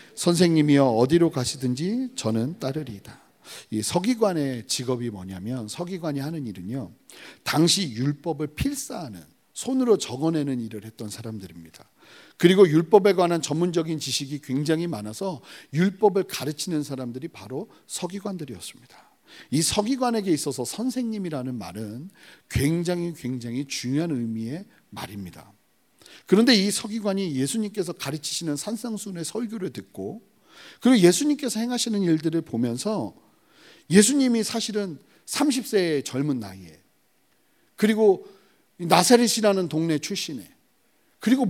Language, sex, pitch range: Korean, male, 135-215 Hz